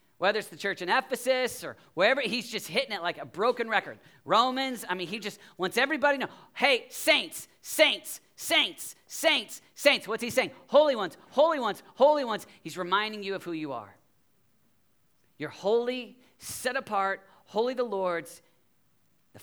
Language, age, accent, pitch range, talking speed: English, 40-59, American, 140-195 Hz, 170 wpm